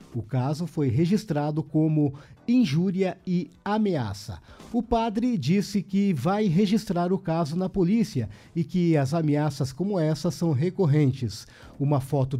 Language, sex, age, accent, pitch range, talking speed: Portuguese, male, 50-69, Brazilian, 135-185 Hz, 135 wpm